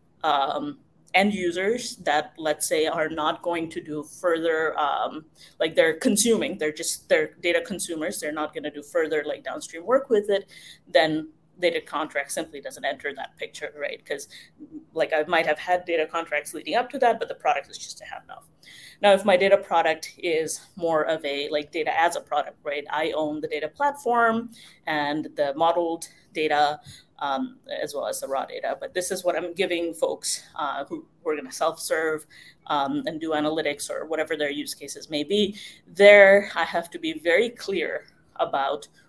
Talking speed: 190 wpm